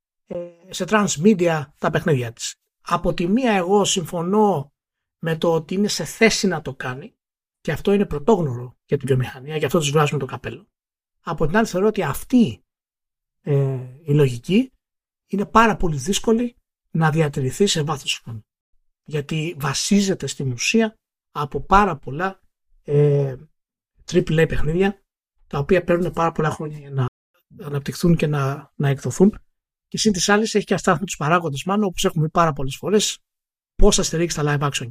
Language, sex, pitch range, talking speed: Greek, male, 145-195 Hz, 160 wpm